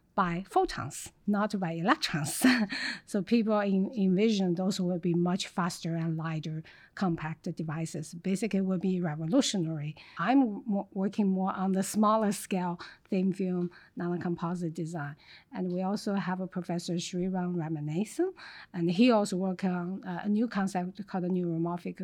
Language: English